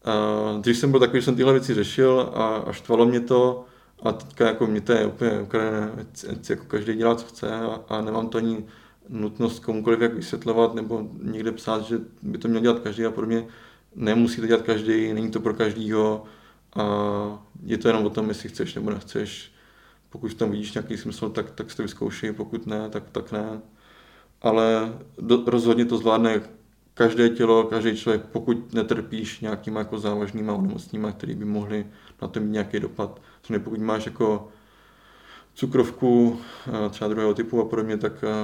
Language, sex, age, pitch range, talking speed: Czech, male, 20-39, 110-115 Hz, 180 wpm